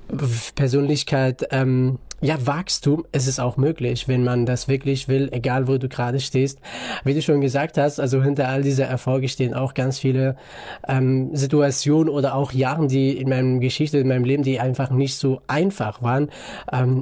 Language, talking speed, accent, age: German, 185 wpm, German, 20-39